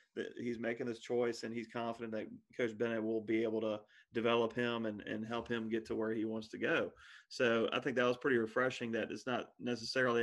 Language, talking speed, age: English, 230 wpm, 30-49